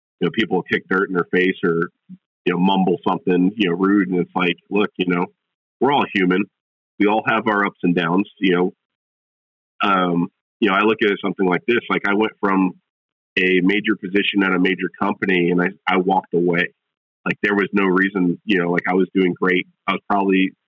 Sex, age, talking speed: male, 30-49, 220 wpm